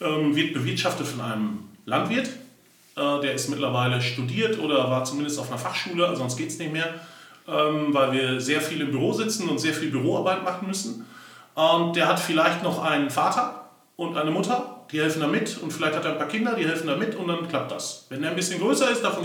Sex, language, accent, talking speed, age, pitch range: male, German, German, 210 wpm, 30-49, 150-195 Hz